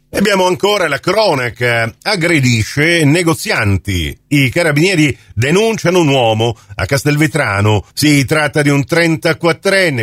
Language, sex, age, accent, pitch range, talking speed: Italian, male, 50-69, native, 110-150 Hz, 110 wpm